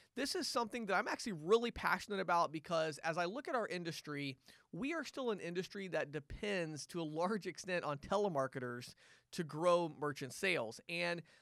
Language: English